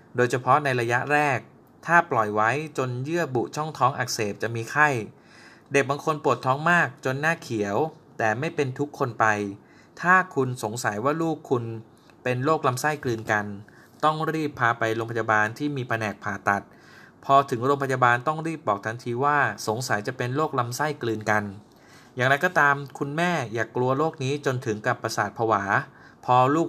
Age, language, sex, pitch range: 20-39, Thai, male, 110-145 Hz